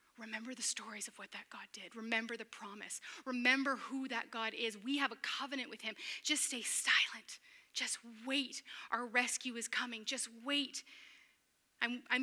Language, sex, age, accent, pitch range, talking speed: English, female, 30-49, American, 220-270 Hz, 165 wpm